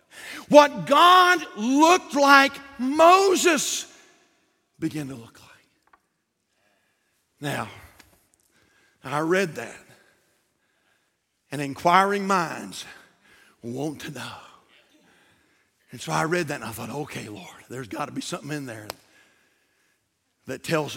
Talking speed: 105 wpm